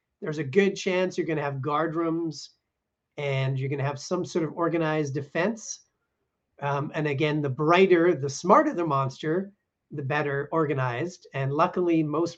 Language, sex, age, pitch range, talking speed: English, male, 40-59, 145-180 Hz, 170 wpm